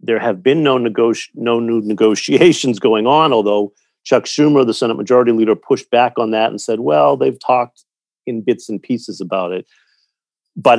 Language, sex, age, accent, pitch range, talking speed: English, male, 50-69, American, 105-125 Hz, 185 wpm